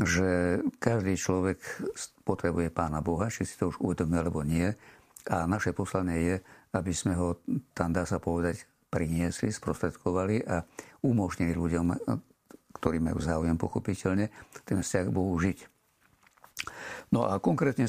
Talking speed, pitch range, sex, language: 140 wpm, 85-105 Hz, male, Slovak